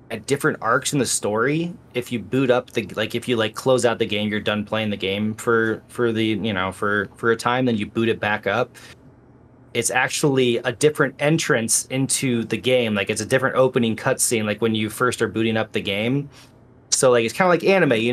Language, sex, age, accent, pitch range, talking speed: English, male, 20-39, American, 110-135 Hz, 230 wpm